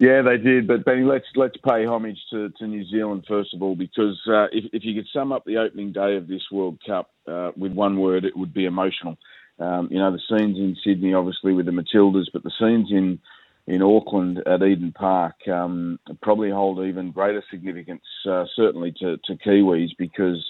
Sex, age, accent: male, 40-59, Australian